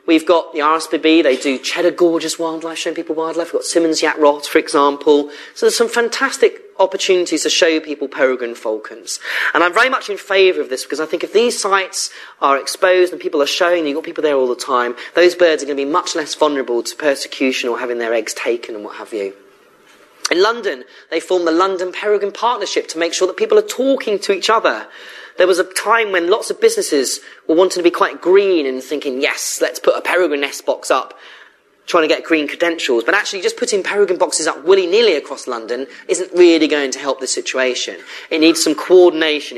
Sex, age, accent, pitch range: male, 30-49, British, 150-200 Hz